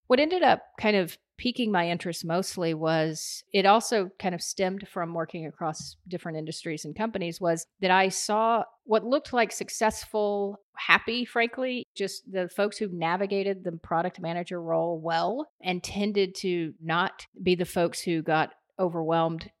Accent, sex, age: American, female, 40-59